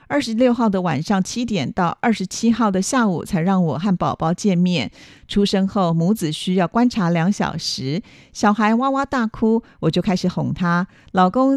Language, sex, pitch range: Chinese, female, 170-215 Hz